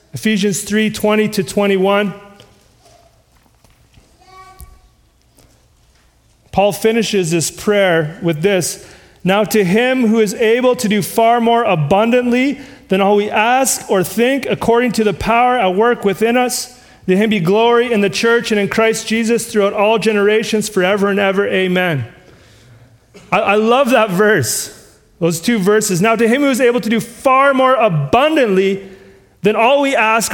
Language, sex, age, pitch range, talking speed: English, male, 30-49, 200-250 Hz, 150 wpm